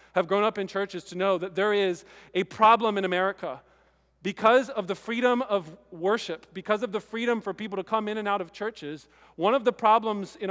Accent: American